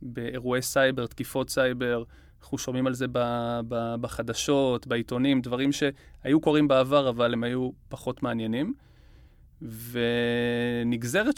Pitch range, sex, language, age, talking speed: 120-150 Hz, male, Hebrew, 20-39, 115 wpm